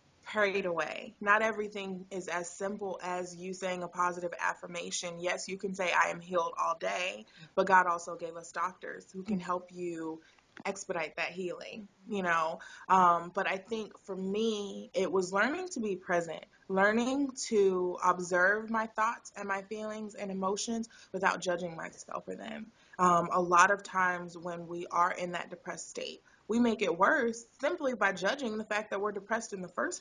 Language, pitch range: English, 180-215 Hz